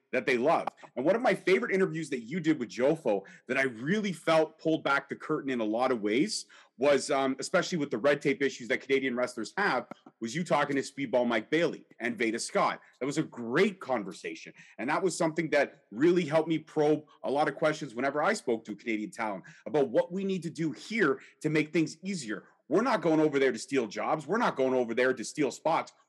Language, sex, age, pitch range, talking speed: English, male, 30-49, 135-175 Hz, 230 wpm